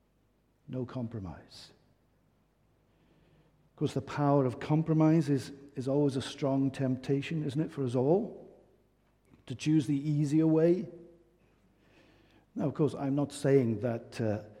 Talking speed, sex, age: 130 wpm, male, 50-69